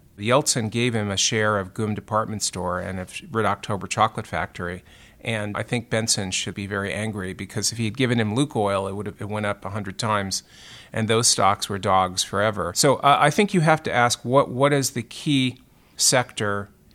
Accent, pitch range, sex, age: American, 100-130 Hz, male, 40-59